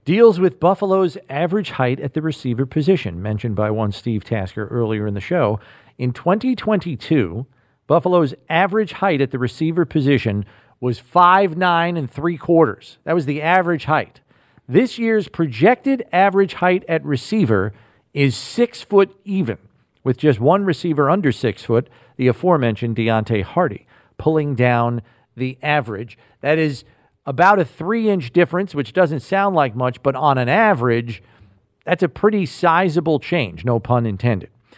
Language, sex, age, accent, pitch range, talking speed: English, male, 50-69, American, 120-180 Hz, 150 wpm